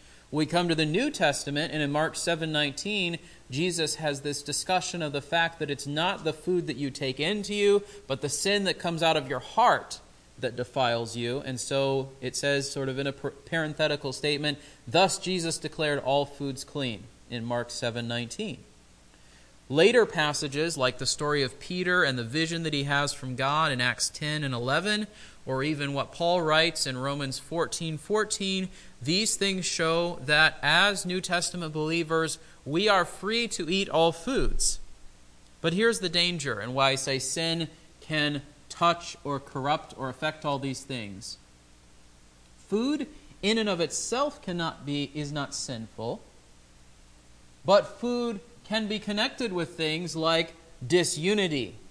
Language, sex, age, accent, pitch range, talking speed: English, male, 30-49, American, 135-170 Hz, 165 wpm